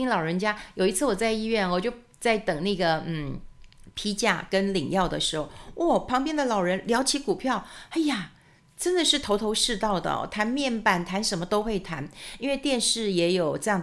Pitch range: 175-225 Hz